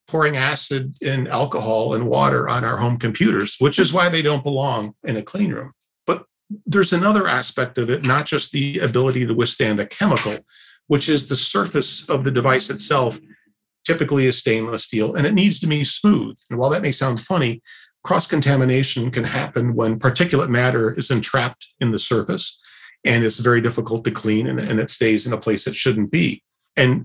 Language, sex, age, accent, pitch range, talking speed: English, male, 40-59, American, 115-140 Hz, 190 wpm